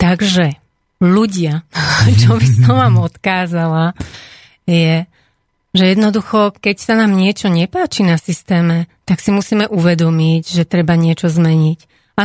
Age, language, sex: 30-49, Slovak, female